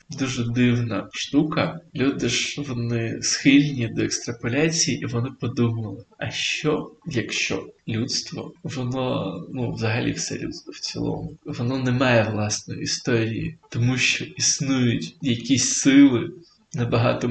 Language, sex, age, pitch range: Ukrainian, male, 20-39, 120-145 Hz